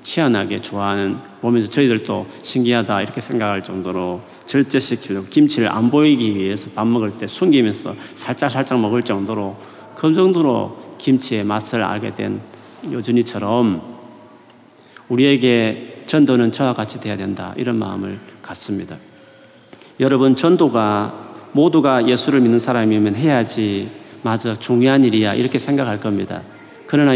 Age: 40-59